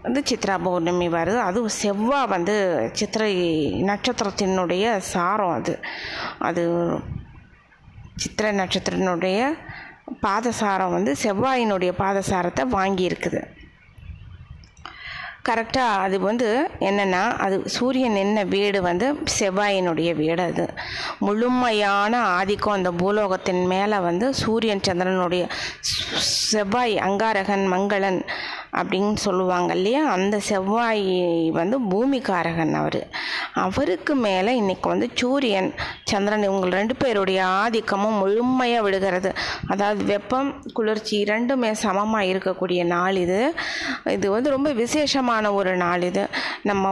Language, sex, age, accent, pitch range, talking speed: Tamil, female, 20-39, native, 190-230 Hz, 100 wpm